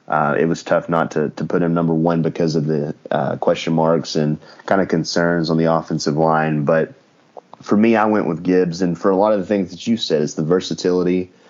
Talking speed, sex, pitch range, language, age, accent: 235 wpm, male, 75-85 Hz, English, 30-49, American